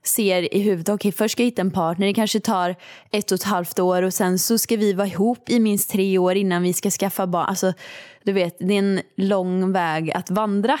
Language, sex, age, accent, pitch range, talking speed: Swedish, female, 20-39, native, 175-205 Hz, 245 wpm